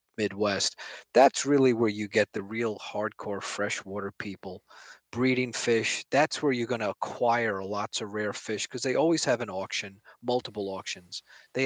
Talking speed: 165 wpm